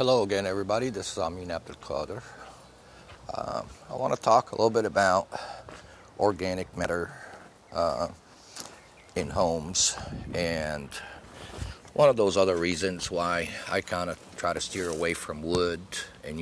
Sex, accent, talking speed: male, American, 140 wpm